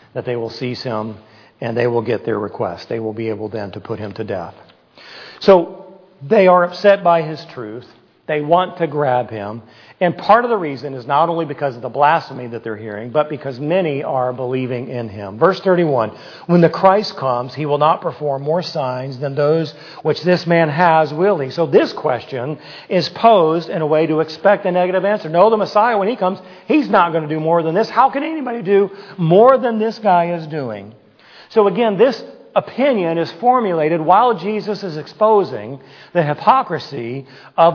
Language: English